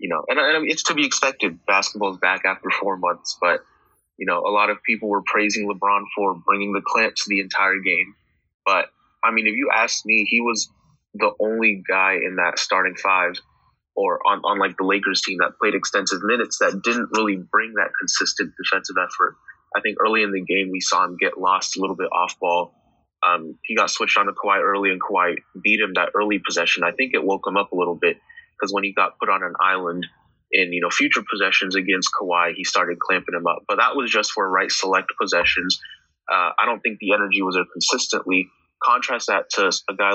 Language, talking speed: English, 225 wpm